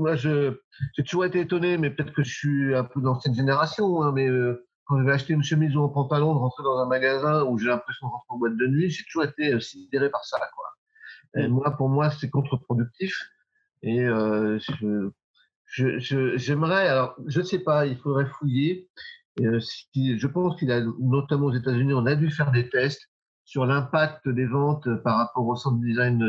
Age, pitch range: 50-69, 120-145 Hz